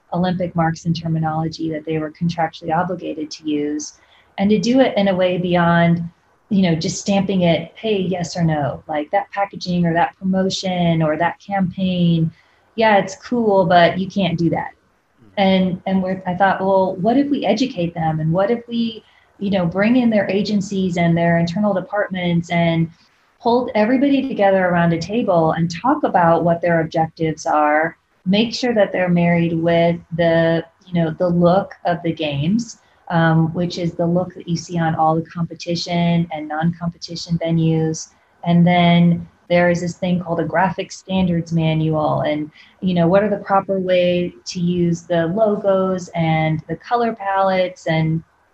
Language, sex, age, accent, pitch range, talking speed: English, female, 30-49, American, 165-195 Hz, 175 wpm